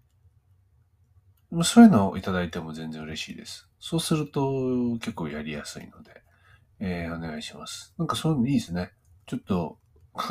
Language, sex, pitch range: Japanese, male, 85-115 Hz